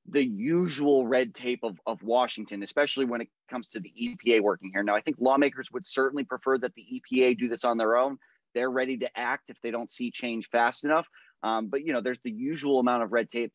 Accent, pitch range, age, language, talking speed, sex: American, 115-135 Hz, 30-49, English, 235 wpm, male